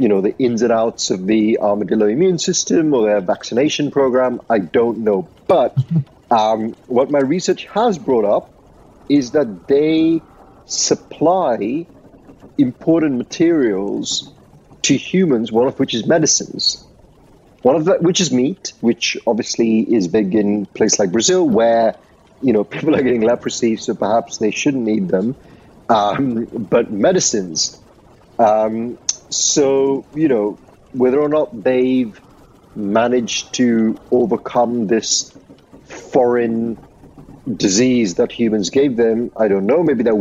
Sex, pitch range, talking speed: male, 110-135 Hz, 135 wpm